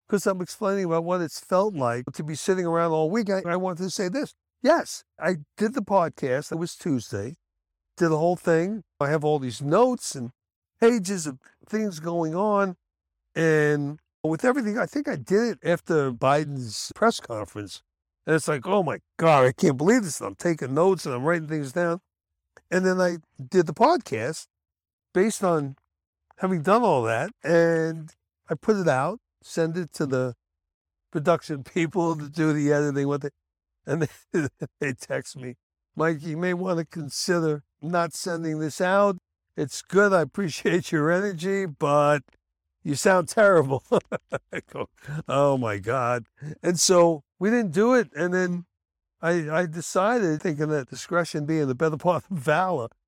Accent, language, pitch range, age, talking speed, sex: American, English, 135-180 Hz, 60-79, 170 wpm, male